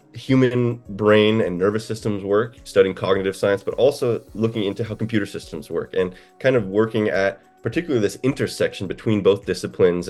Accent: American